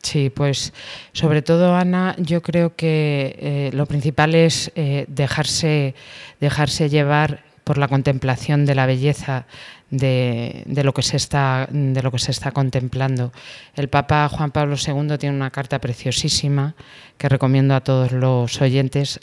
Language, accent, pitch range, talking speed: Spanish, Spanish, 135-150 Hz, 155 wpm